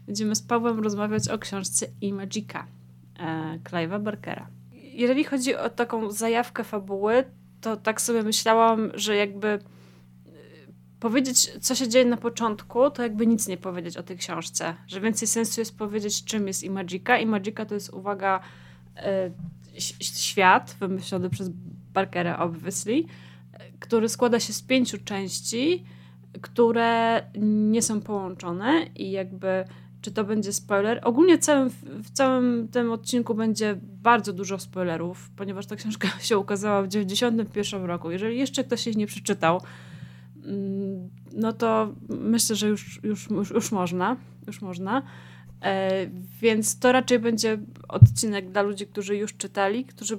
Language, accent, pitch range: Polish, native, 175-225 Hz